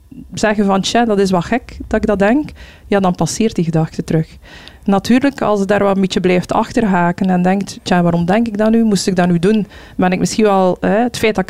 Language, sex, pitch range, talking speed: Dutch, female, 185-215 Hz, 250 wpm